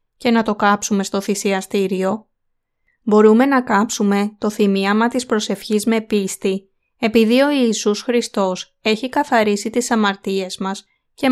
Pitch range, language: 205-240 Hz, Greek